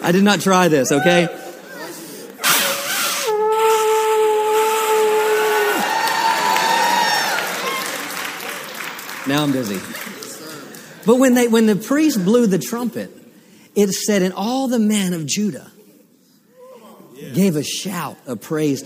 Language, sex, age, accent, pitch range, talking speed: English, male, 50-69, American, 150-220 Hz, 100 wpm